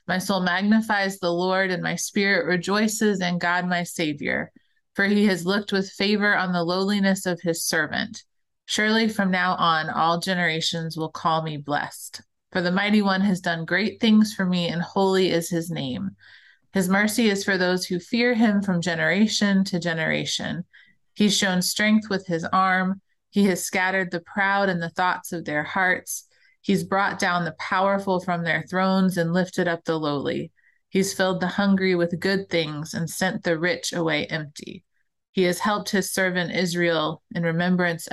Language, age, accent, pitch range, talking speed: English, 30-49, American, 170-200 Hz, 180 wpm